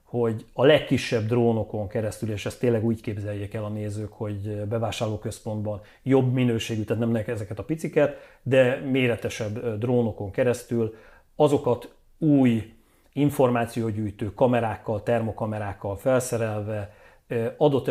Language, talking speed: Hungarian, 115 wpm